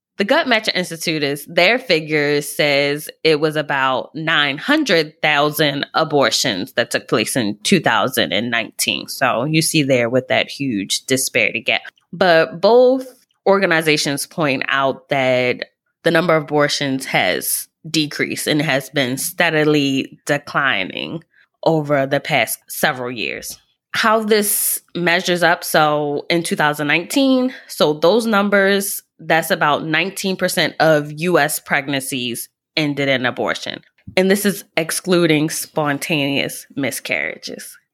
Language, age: English, 20-39